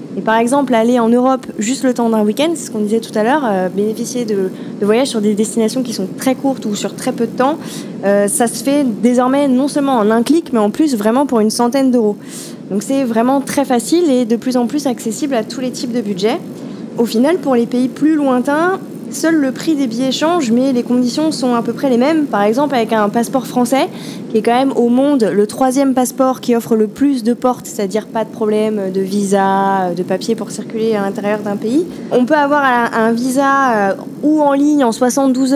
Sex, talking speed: female, 235 wpm